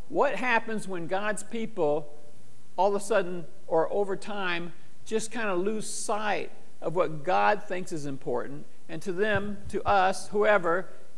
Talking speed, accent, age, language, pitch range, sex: 155 wpm, American, 50-69, English, 155-205 Hz, male